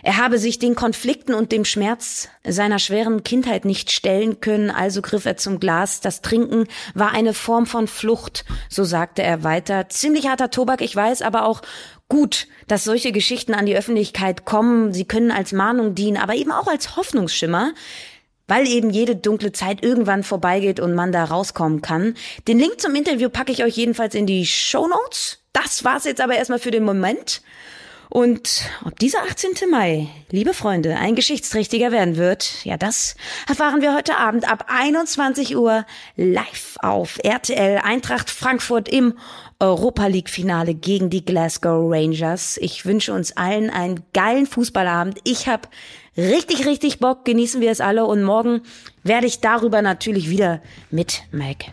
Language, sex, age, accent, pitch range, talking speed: German, female, 20-39, German, 190-240 Hz, 165 wpm